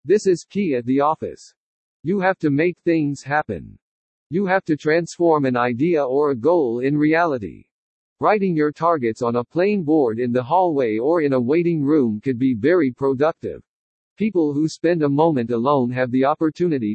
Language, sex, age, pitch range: English, male, 50-69, 130-170 Hz